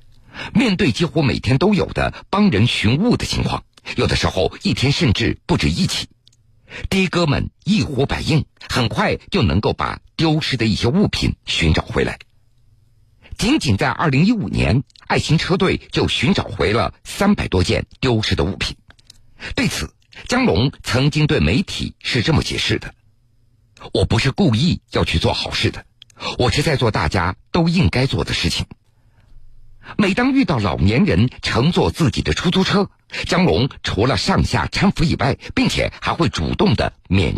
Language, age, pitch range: Chinese, 50-69, 110-145 Hz